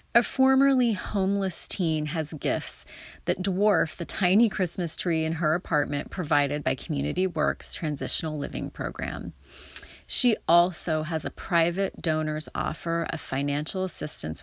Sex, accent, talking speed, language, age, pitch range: female, American, 135 wpm, English, 30-49, 150-185 Hz